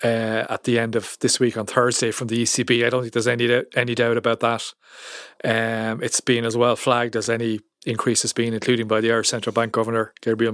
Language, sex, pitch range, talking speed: English, male, 115-130 Hz, 235 wpm